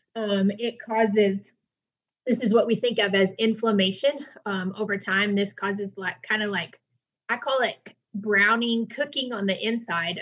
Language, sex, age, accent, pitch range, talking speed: English, female, 30-49, American, 190-220 Hz, 165 wpm